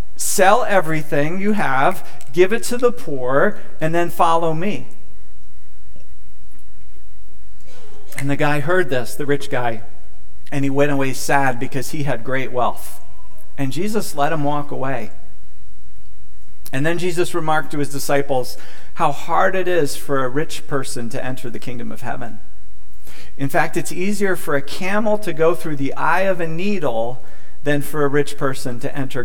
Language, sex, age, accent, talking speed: English, male, 40-59, American, 165 wpm